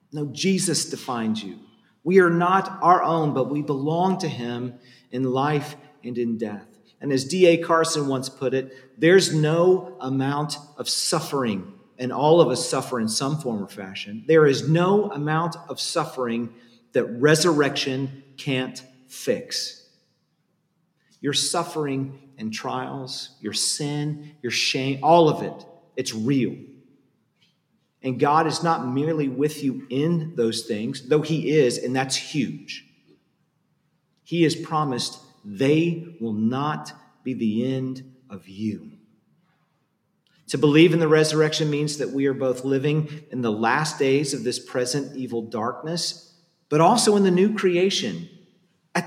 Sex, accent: male, American